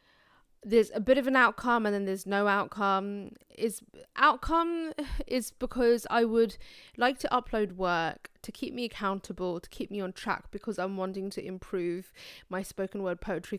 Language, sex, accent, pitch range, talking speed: English, female, British, 190-225 Hz, 170 wpm